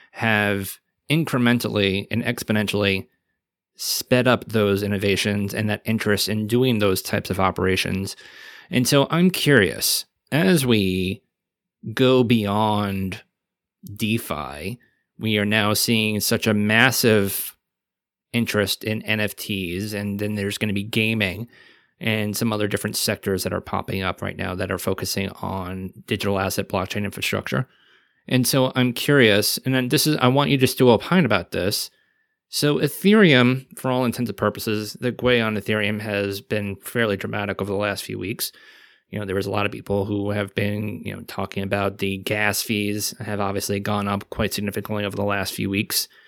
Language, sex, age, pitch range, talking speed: English, male, 20-39, 100-120 Hz, 165 wpm